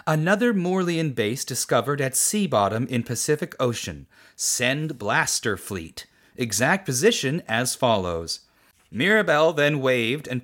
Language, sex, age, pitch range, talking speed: English, male, 30-49, 110-145 Hz, 120 wpm